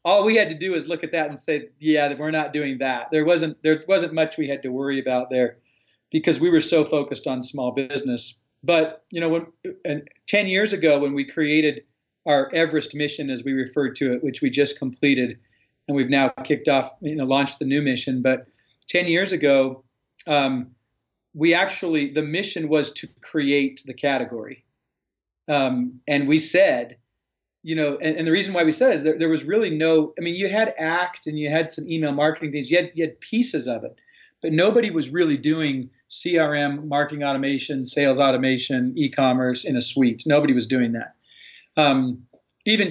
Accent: American